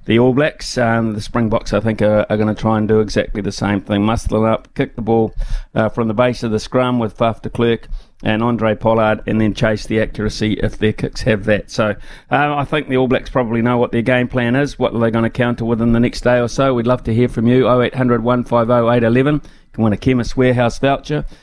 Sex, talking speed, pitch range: male, 255 wpm, 110-130 Hz